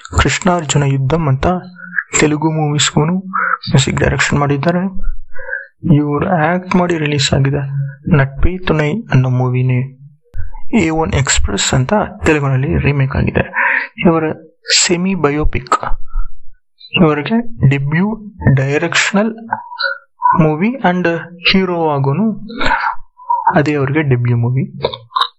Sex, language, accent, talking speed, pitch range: male, Kannada, native, 85 wpm, 140-195 Hz